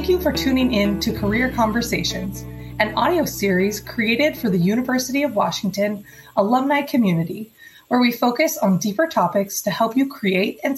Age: 20-39